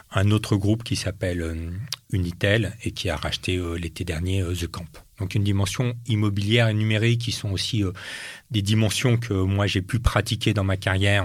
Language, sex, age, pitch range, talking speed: French, male, 40-59, 95-115 Hz, 175 wpm